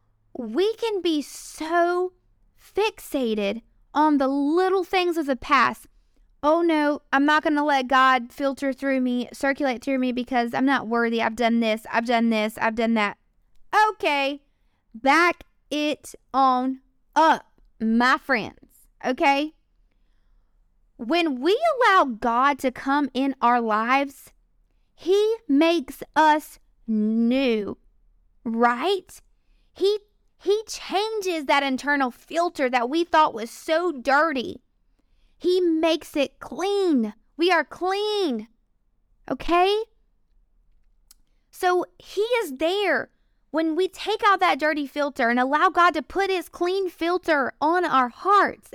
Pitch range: 260-355 Hz